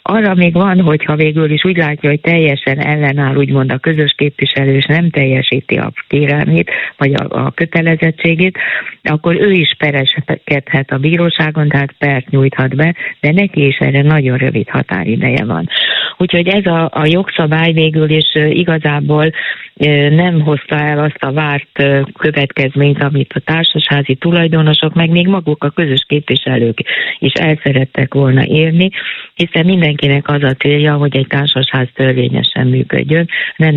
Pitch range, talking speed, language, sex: 140-165 Hz, 155 wpm, Hungarian, female